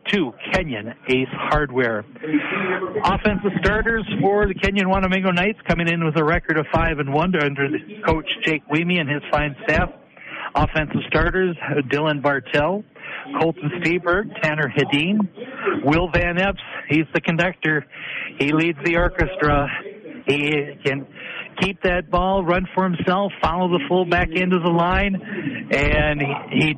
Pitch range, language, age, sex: 145-185 Hz, English, 60-79, male